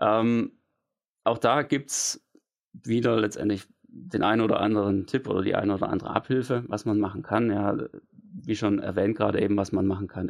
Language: German